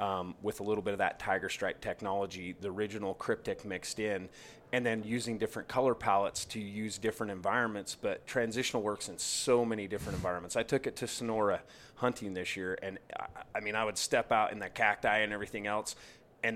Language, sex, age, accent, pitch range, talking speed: English, male, 30-49, American, 100-115 Hz, 205 wpm